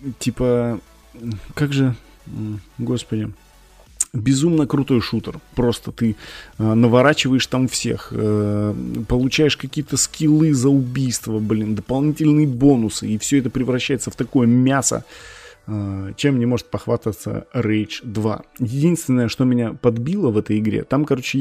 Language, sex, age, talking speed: Russian, male, 20-39, 125 wpm